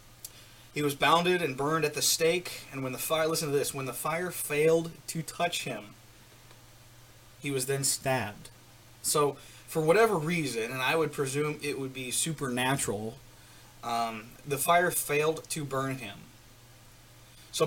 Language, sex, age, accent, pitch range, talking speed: English, male, 20-39, American, 120-160 Hz, 155 wpm